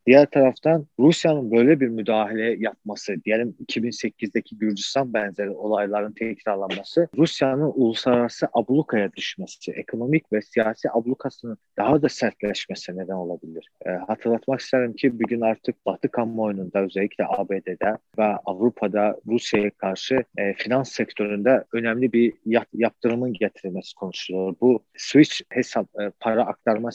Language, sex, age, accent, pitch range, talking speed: Turkish, male, 40-59, native, 105-125 Hz, 120 wpm